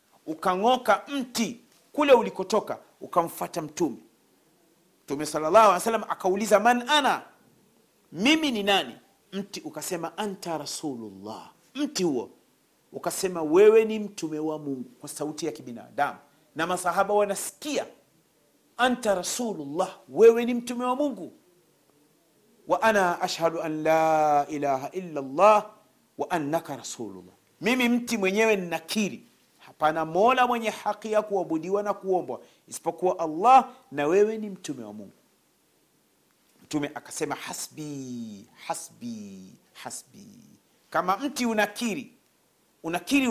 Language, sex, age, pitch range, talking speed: Swahili, male, 40-59, 155-225 Hz, 115 wpm